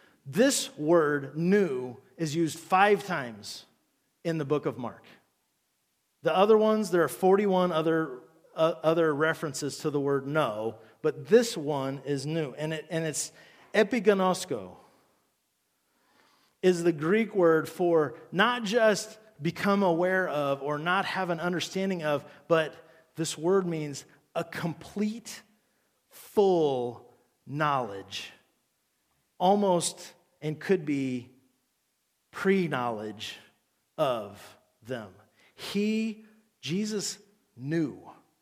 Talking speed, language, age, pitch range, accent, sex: 110 wpm, English, 40-59, 140-185 Hz, American, male